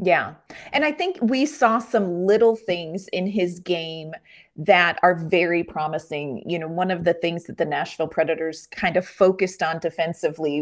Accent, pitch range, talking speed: American, 165-215 Hz, 175 wpm